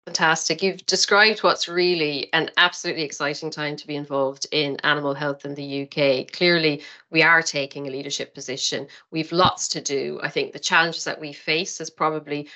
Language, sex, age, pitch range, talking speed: English, female, 40-59, 150-175 Hz, 180 wpm